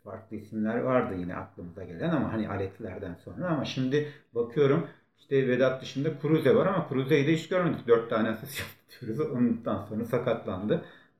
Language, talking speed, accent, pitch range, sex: Turkish, 165 wpm, native, 110-155 Hz, male